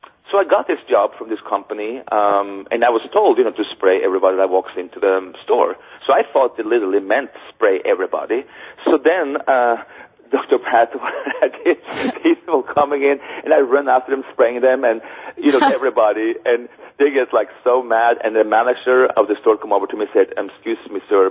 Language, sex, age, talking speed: English, male, 40-59, 205 wpm